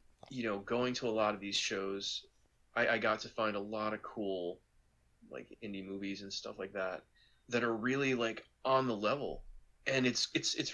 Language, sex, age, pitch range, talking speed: English, male, 20-39, 100-130 Hz, 200 wpm